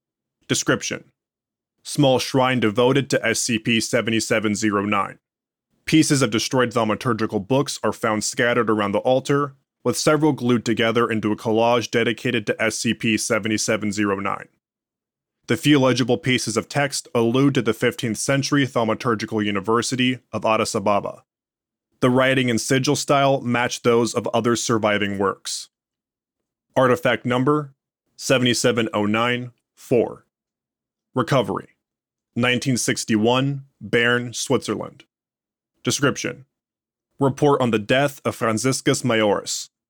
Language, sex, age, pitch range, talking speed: English, male, 20-39, 115-135 Hz, 110 wpm